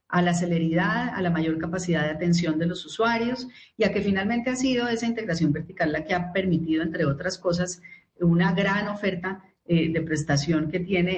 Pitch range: 165-195 Hz